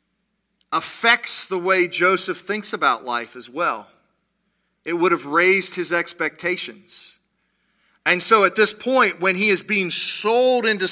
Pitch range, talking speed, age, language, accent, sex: 155-210 Hz, 145 wpm, 40-59, English, American, male